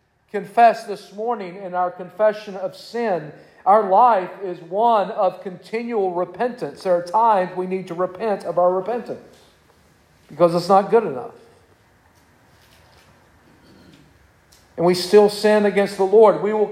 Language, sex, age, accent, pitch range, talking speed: English, male, 40-59, American, 160-205 Hz, 140 wpm